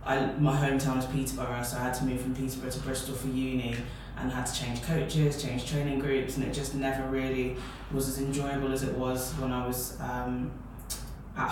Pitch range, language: 125-135 Hz, English